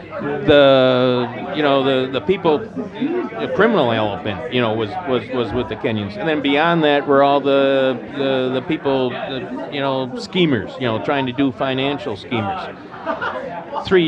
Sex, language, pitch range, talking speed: male, English, 130-165 Hz, 165 wpm